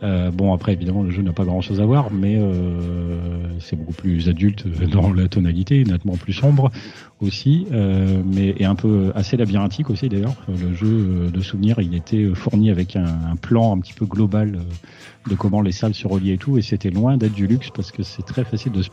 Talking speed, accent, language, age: 220 wpm, French, French, 40-59